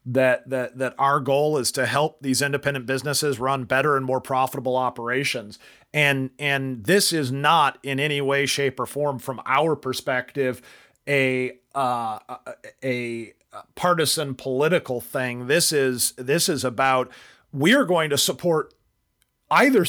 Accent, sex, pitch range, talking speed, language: American, male, 130-160 Hz, 145 wpm, English